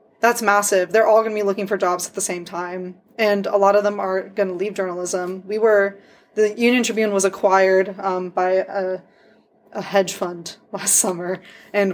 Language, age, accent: English, 20-39, American